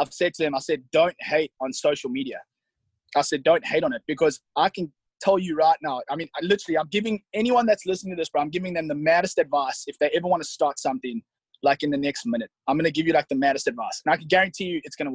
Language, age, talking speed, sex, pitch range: English, 20-39, 275 wpm, male, 155-200 Hz